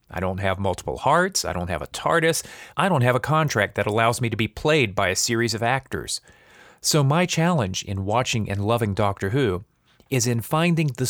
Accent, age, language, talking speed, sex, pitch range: American, 30-49, English, 210 wpm, male, 100-135 Hz